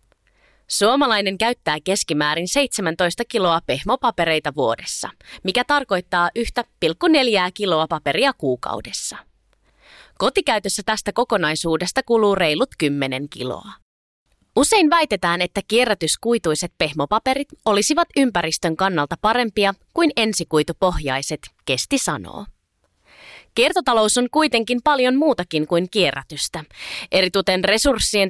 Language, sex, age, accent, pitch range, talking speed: Finnish, female, 20-39, native, 175-255 Hz, 90 wpm